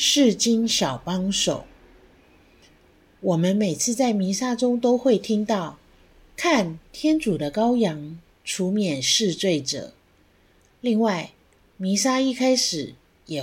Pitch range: 150-240 Hz